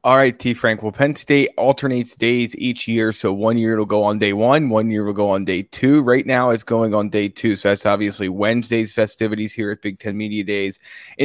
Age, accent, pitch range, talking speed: 20-39, American, 110-140 Hz, 240 wpm